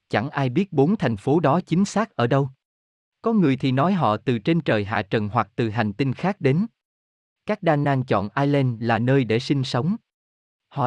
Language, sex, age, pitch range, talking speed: Vietnamese, male, 20-39, 110-155 Hz, 210 wpm